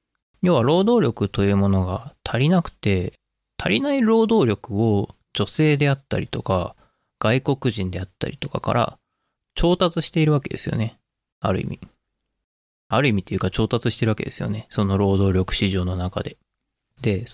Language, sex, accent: Japanese, male, native